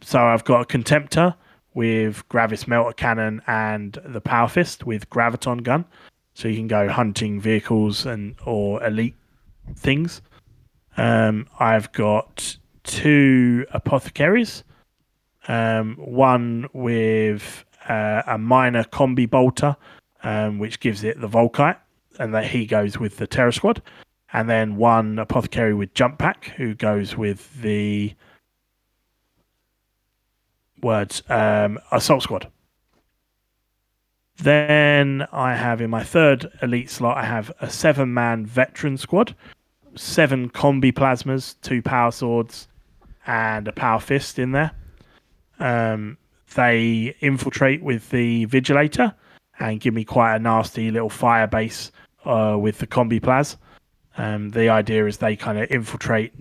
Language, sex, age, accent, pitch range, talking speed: English, male, 30-49, British, 110-130 Hz, 130 wpm